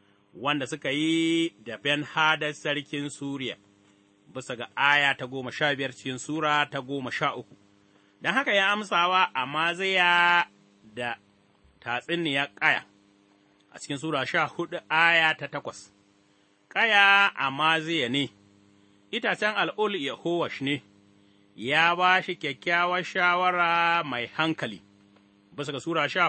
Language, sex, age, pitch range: English, male, 30-49, 100-170 Hz